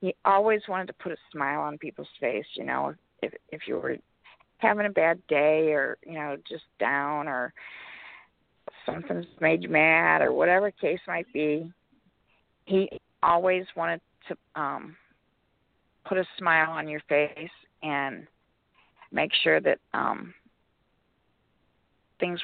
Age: 40-59